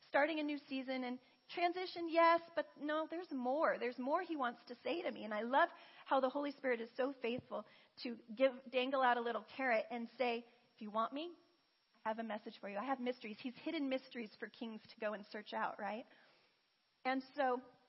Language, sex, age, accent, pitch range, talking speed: English, female, 40-59, American, 235-290 Hz, 215 wpm